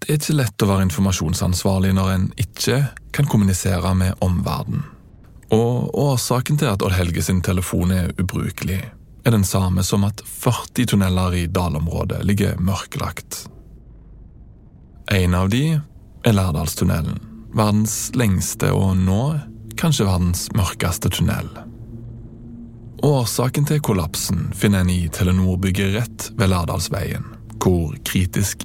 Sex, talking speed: male, 130 wpm